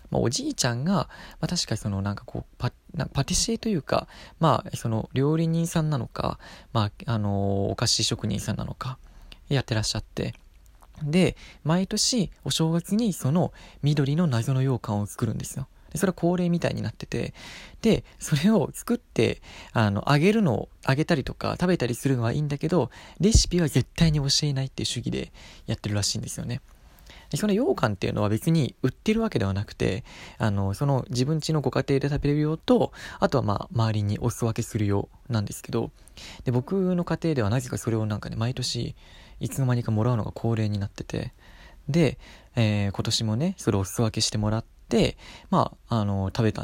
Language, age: Japanese, 20-39